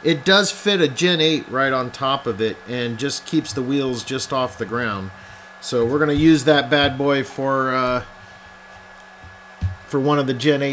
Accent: American